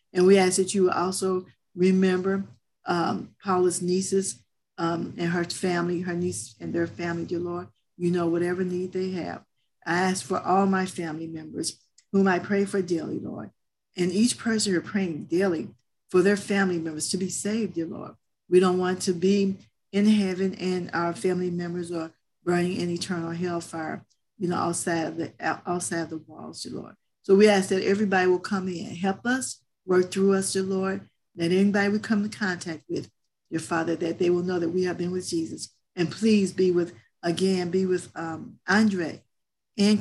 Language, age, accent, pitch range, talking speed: English, 50-69, American, 170-195 Hz, 190 wpm